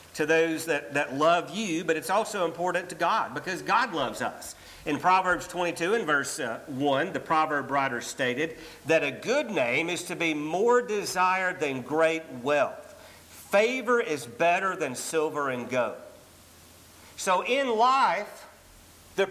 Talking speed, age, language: 155 wpm, 50-69, English